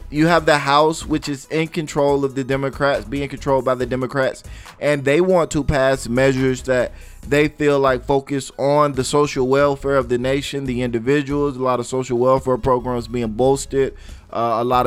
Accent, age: American, 20-39